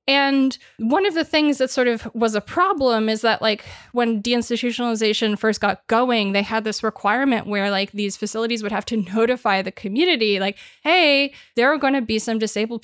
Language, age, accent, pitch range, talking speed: English, 20-39, American, 215-275 Hz, 195 wpm